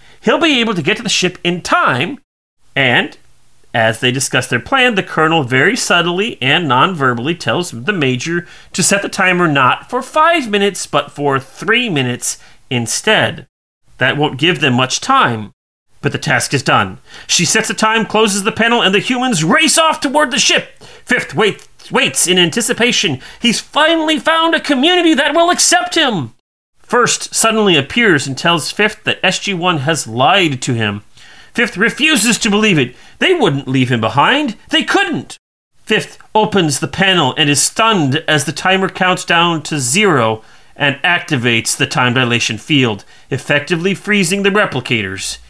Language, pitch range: English, 140-225 Hz